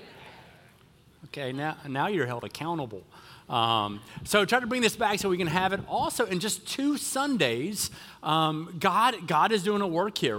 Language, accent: English, American